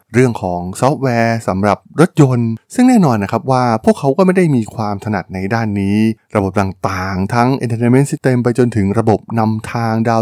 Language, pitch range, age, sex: Thai, 100-130 Hz, 20-39, male